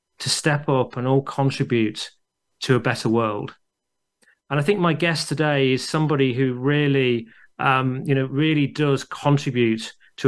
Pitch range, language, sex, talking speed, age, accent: 130-160 Hz, English, male, 160 wpm, 40-59, British